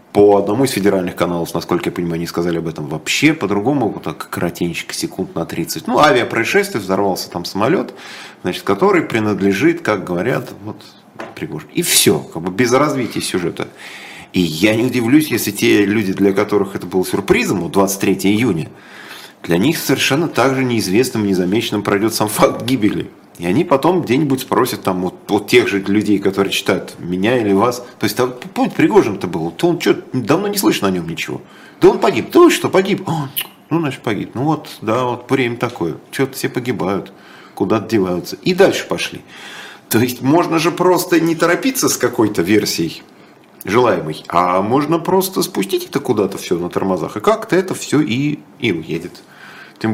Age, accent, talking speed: 30-49, native, 175 wpm